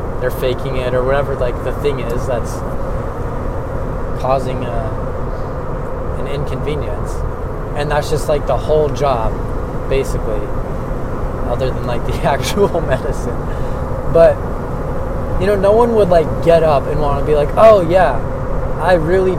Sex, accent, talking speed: male, American, 140 wpm